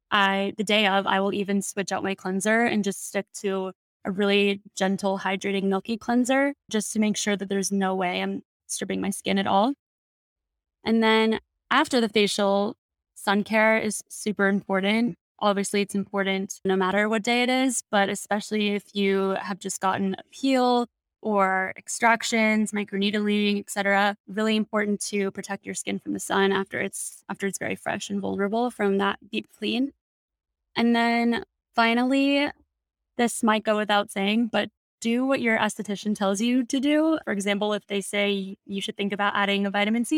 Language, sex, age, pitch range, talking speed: English, female, 20-39, 195-220 Hz, 180 wpm